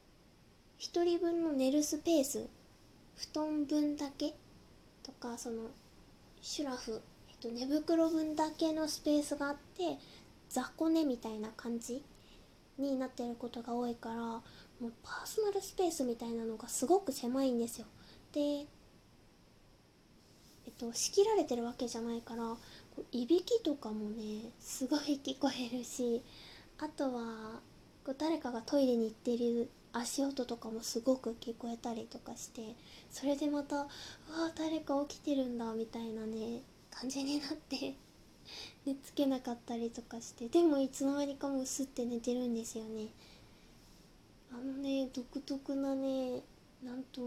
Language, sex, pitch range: Japanese, female, 235-285 Hz